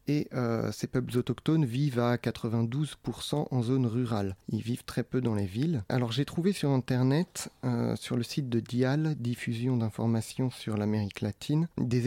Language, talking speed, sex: French, 175 wpm, male